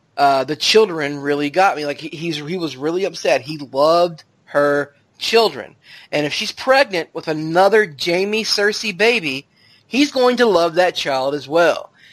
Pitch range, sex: 150-195 Hz, male